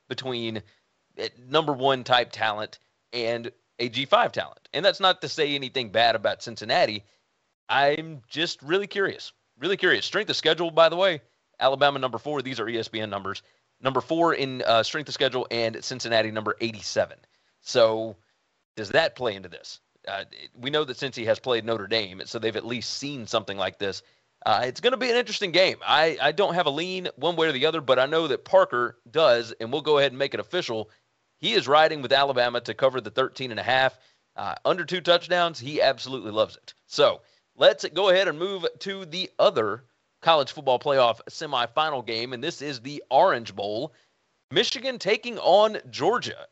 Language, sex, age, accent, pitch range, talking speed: English, male, 30-49, American, 115-165 Hz, 190 wpm